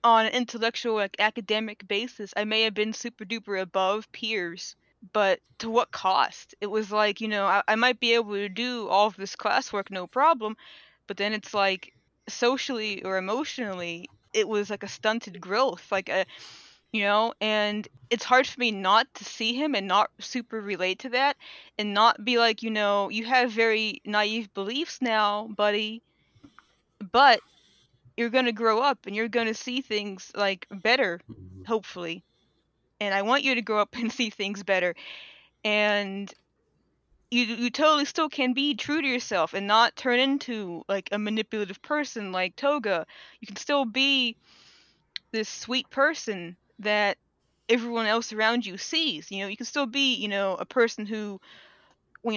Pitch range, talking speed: 200-245 Hz, 175 wpm